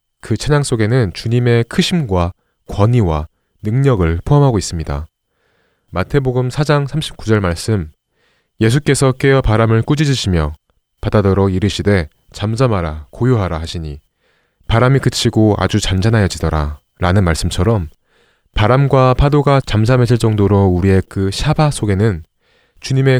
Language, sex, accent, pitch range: Korean, male, native, 95-130 Hz